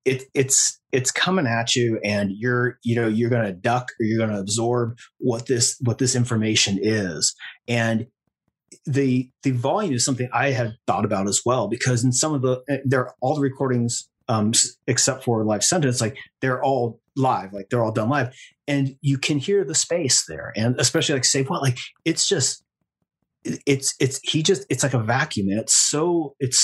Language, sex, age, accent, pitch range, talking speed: English, male, 30-49, American, 115-130 Hz, 195 wpm